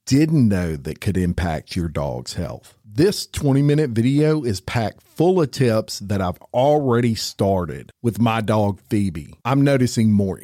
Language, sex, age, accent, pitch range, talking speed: English, male, 50-69, American, 90-125 Hz, 155 wpm